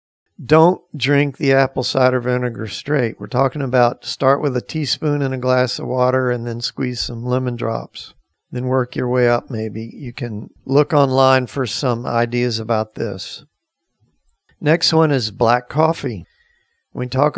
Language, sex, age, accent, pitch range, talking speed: English, male, 50-69, American, 125-150 Hz, 165 wpm